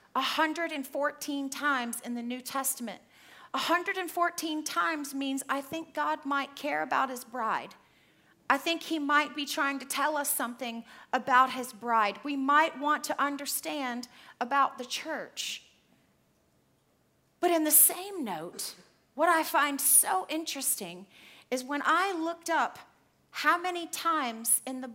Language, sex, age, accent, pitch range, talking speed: English, female, 40-59, American, 250-325 Hz, 150 wpm